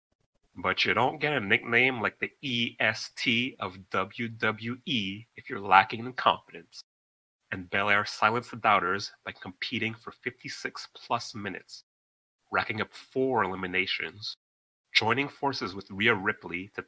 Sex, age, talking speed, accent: male, 30-49, 130 wpm, American